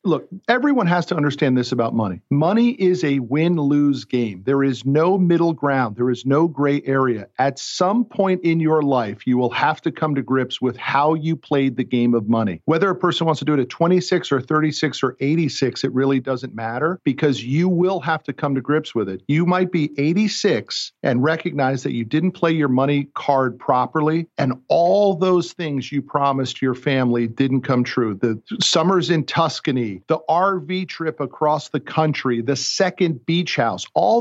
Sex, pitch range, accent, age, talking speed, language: male, 125-160 Hz, American, 50-69, 195 wpm, English